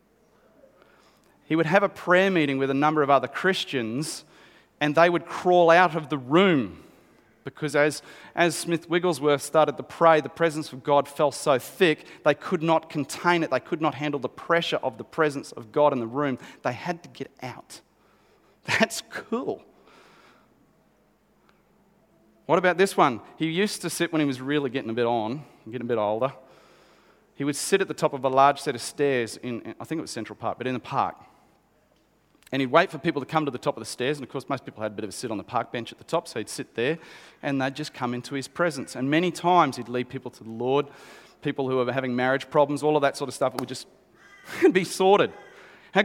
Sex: male